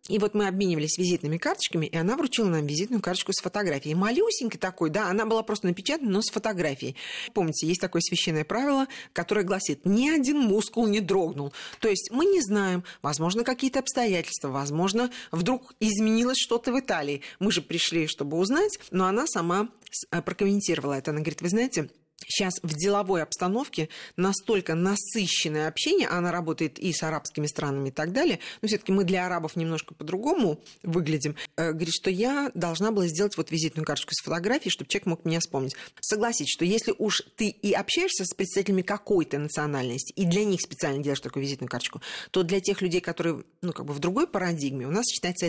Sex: female